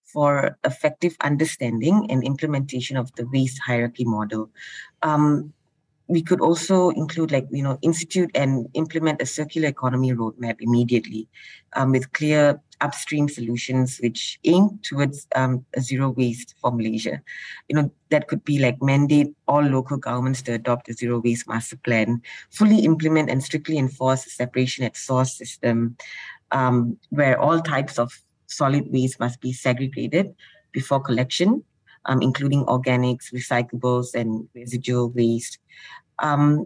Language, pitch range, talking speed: English, 125-150 Hz, 140 wpm